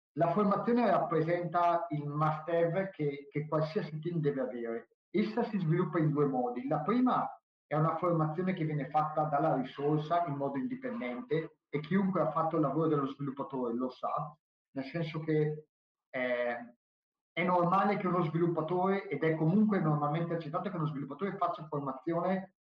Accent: native